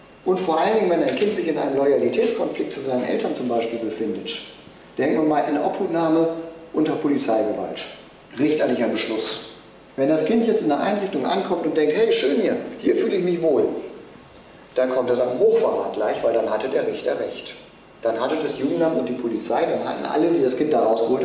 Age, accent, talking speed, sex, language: 40-59, German, 200 wpm, male, German